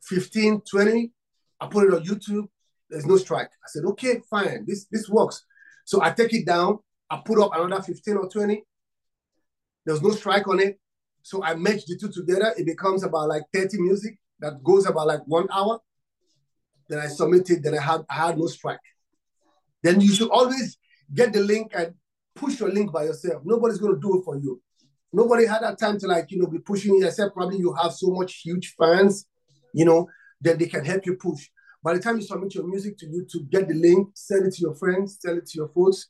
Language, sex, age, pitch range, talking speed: English, male, 30-49, 165-205 Hz, 220 wpm